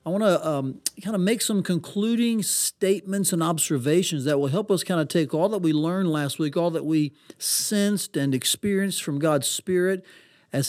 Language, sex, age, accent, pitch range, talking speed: English, male, 40-59, American, 140-175 Hz, 195 wpm